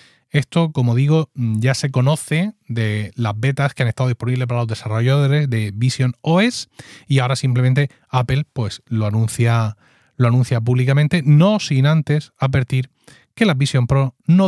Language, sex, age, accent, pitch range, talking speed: Spanish, male, 30-49, Spanish, 115-140 Hz, 150 wpm